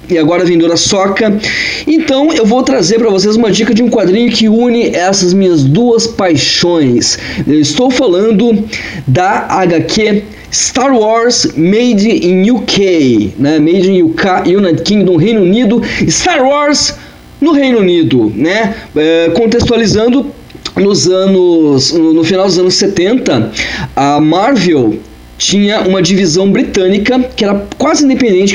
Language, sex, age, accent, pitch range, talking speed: Portuguese, male, 20-39, Brazilian, 185-250 Hz, 125 wpm